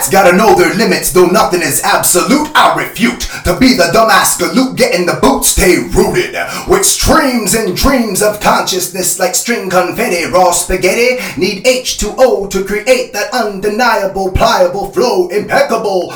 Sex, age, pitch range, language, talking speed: male, 30-49, 185-245 Hz, English, 150 wpm